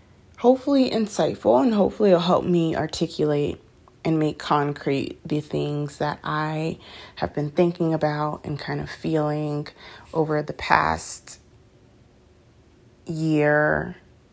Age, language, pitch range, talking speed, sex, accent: 30-49, English, 145-175 Hz, 115 wpm, female, American